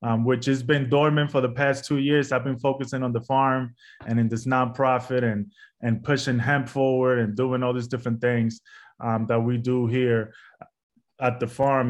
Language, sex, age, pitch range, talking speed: English, male, 20-39, 120-135 Hz, 195 wpm